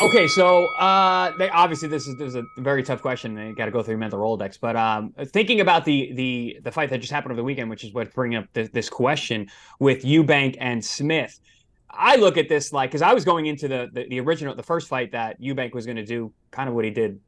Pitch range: 125-165 Hz